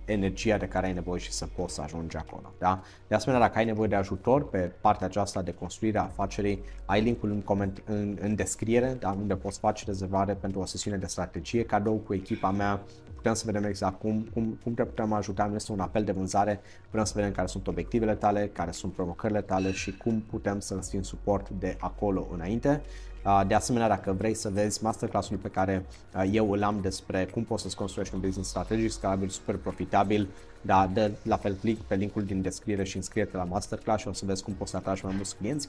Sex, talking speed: male, 215 wpm